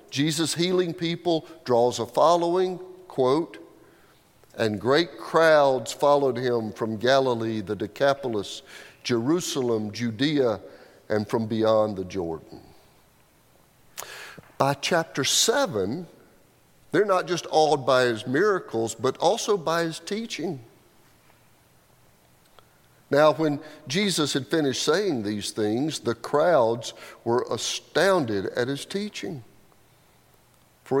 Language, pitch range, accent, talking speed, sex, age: English, 115-160 Hz, American, 105 wpm, male, 50-69